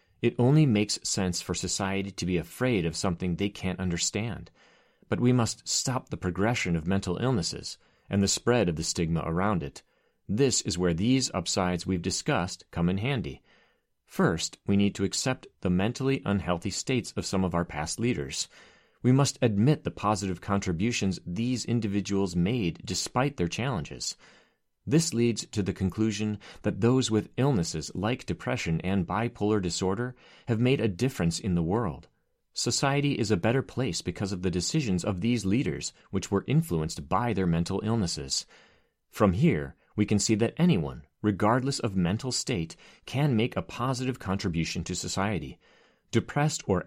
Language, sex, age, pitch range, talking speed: English, male, 30-49, 90-120 Hz, 165 wpm